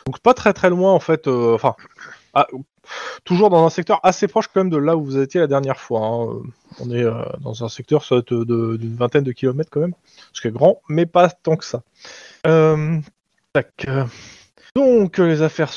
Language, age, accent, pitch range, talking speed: French, 20-39, French, 125-175 Hz, 210 wpm